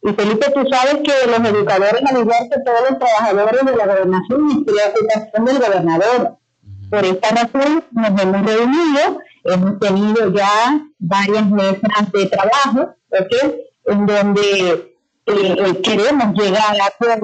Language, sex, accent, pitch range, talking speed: Spanish, female, American, 195-255 Hz, 150 wpm